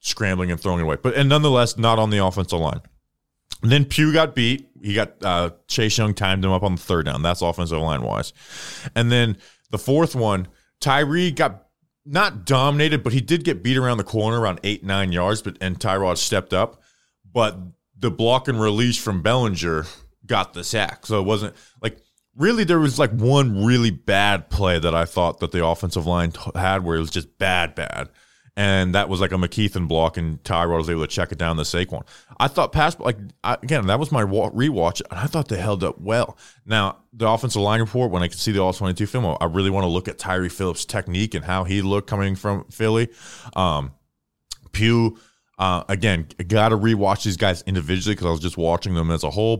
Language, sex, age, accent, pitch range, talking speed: English, male, 20-39, American, 90-115 Hz, 215 wpm